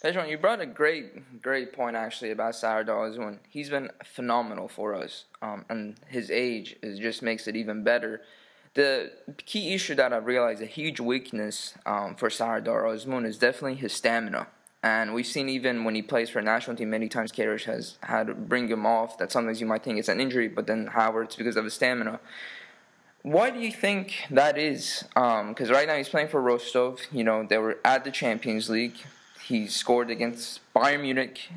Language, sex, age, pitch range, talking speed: English, male, 20-39, 115-135 Hz, 200 wpm